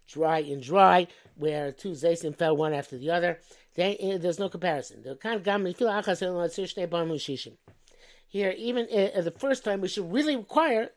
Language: English